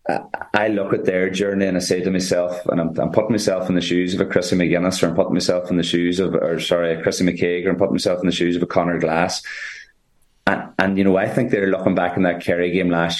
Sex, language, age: male, English, 30-49